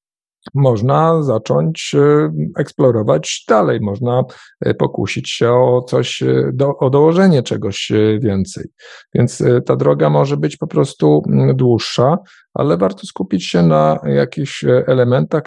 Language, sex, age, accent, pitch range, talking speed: Polish, male, 50-69, native, 115-145 Hz, 110 wpm